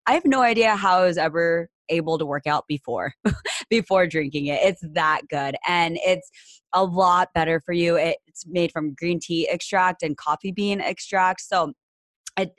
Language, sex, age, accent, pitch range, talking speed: English, female, 20-39, American, 160-190 Hz, 180 wpm